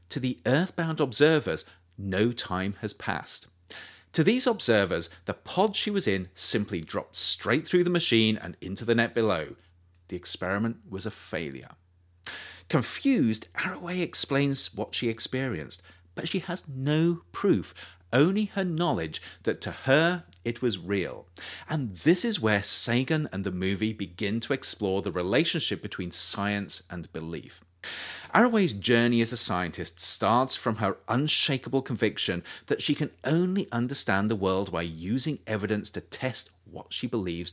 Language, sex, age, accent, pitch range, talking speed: English, male, 40-59, British, 95-150 Hz, 150 wpm